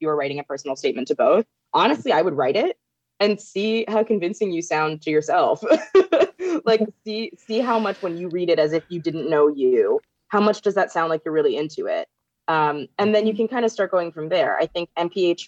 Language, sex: English, female